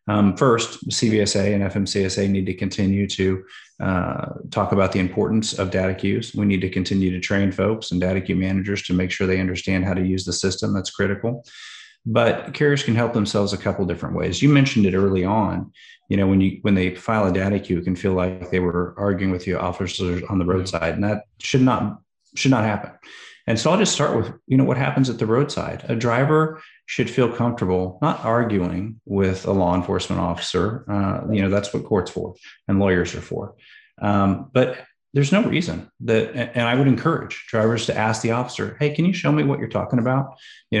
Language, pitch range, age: English, 95-115 Hz, 30-49